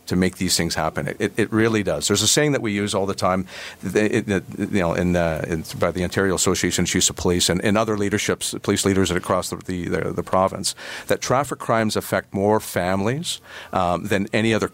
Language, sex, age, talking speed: English, male, 50-69, 230 wpm